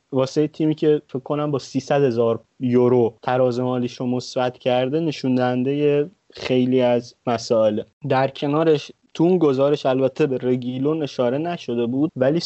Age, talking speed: 30-49, 140 wpm